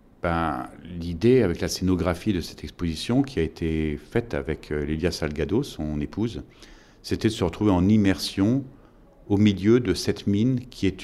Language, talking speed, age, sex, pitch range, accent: French, 165 wpm, 50-69, male, 85-115 Hz, French